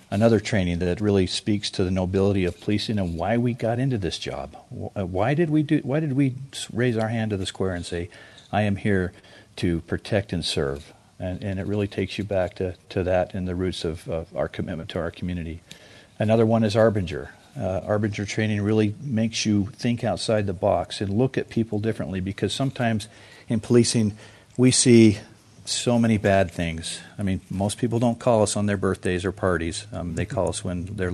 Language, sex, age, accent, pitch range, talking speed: English, male, 50-69, American, 95-110 Hz, 205 wpm